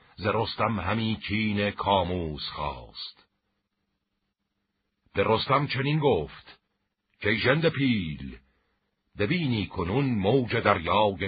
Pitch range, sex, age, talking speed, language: 85-110 Hz, male, 60-79, 85 wpm, Persian